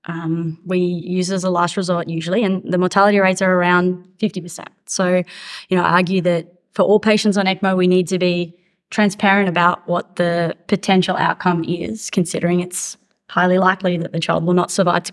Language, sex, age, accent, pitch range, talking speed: English, female, 20-39, Australian, 175-195 Hz, 190 wpm